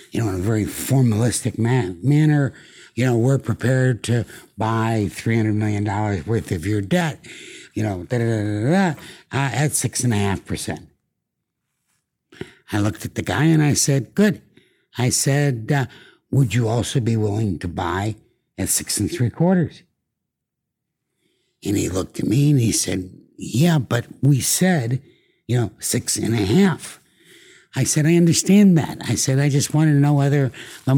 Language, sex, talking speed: English, male, 160 wpm